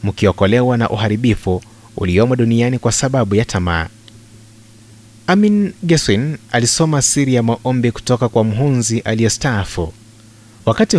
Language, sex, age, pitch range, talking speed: Swahili, male, 30-49, 105-125 Hz, 110 wpm